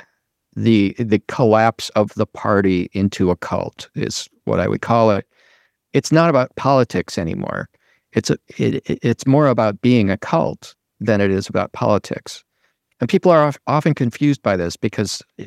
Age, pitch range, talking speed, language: 50-69, 105-130 Hz, 165 wpm, English